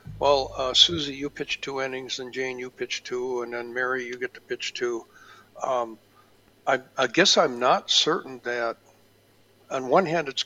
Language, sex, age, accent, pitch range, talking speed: English, male, 60-79, American, 125-155 Hz, 185 wpm